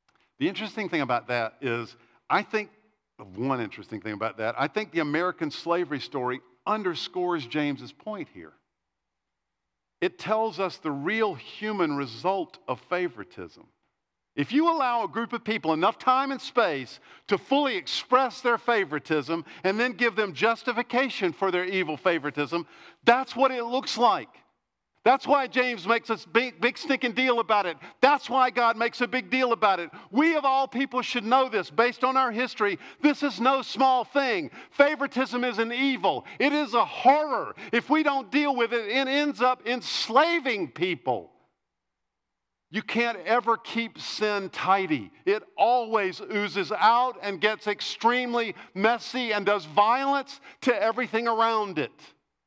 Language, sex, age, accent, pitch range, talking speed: English, male, 50-69, American, 170-255 Hz, 160 wpm